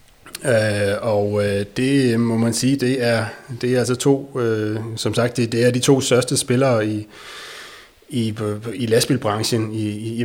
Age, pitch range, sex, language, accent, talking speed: 30-49, 110-130 Hz, male, Danish, native, 150 wpm